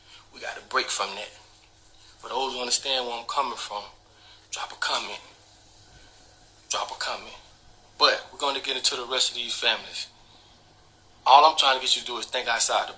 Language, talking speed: English, 190 wpm